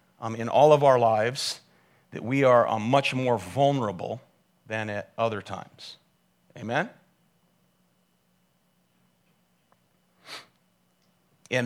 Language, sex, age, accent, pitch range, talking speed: English, male, 40-59, American, 110-140 Hz, 100 wpm